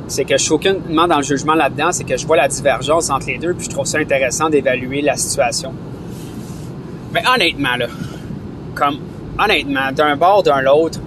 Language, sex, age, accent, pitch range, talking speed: French, male, 30-49, Canadian, 140-170 Hz, 195 wpm